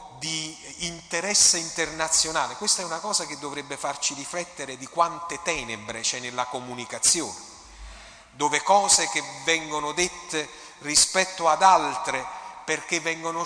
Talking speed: 120 wpm